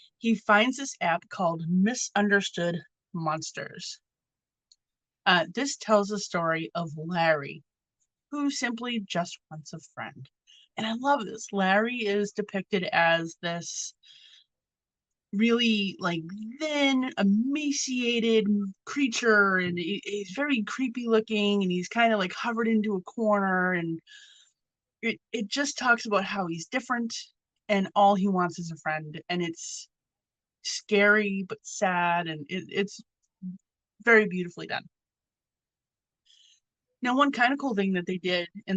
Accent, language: American, English